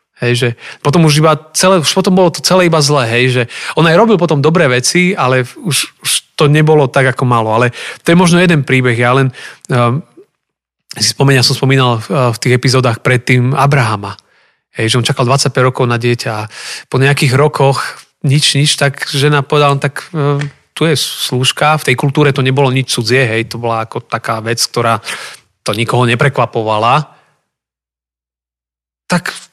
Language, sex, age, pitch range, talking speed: Slovak, male, 30-49, 120-145 Hz, 175 wpm